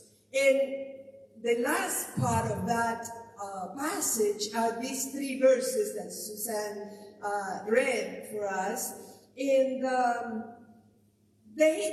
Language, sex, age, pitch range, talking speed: English, female, 50-69, 205-270 Hz, 100 wpm